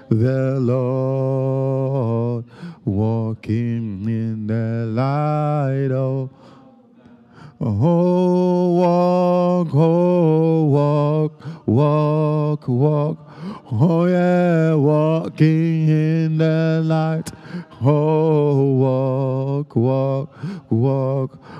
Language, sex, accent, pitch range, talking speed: English, male, American, 130-155 Hz, 65 wpm